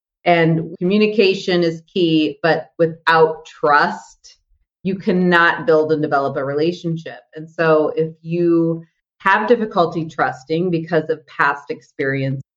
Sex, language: female, English